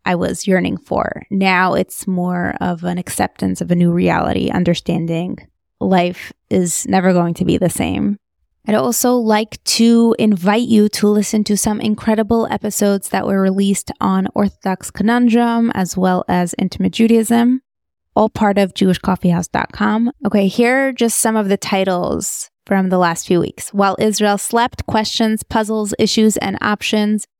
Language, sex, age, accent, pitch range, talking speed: English, female, 20-39, American, 190-220 Hz, 155 wpm